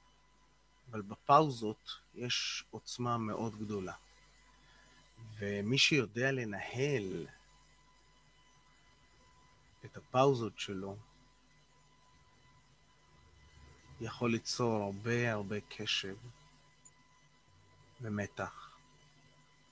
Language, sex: Hebrew, male